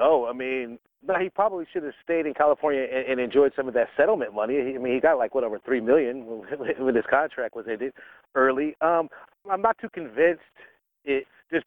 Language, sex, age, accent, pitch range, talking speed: English, male, 40-59, American, 130-165 Hz, 195 wpm